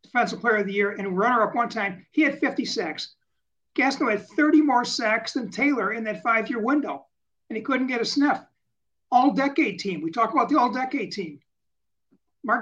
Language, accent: English, American